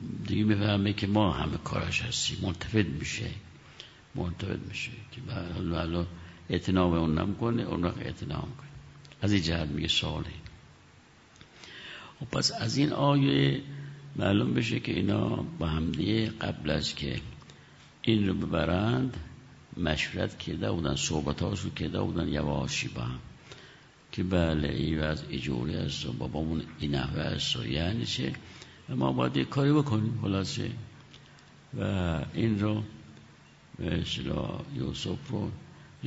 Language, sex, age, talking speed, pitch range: Persian, male, 60-79, 125 wpm, 80-120 Hz